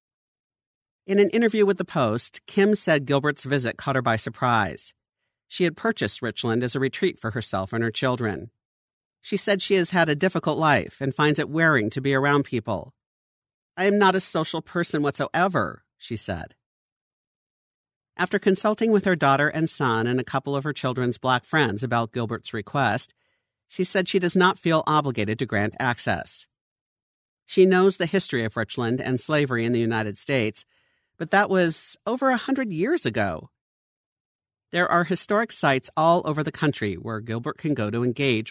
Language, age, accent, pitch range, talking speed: English, 50-69, American, 120-180 Hz, 175 wpm